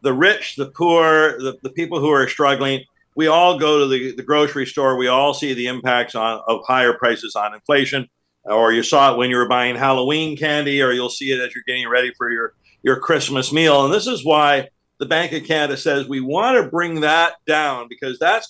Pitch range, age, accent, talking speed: 130-155 Hz, 50-69, American, 220 wpm